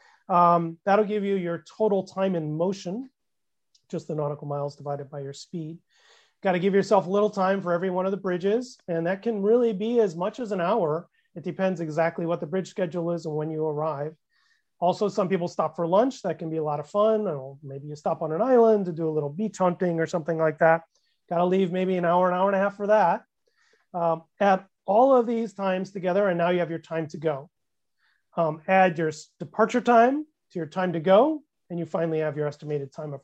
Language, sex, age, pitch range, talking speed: English, male, 30-49, 160-195 Hz, 225 wpm